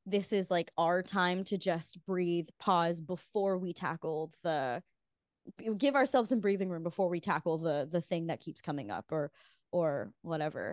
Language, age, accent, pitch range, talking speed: English, 20-39, American, 170-205 Hz, 175 wpm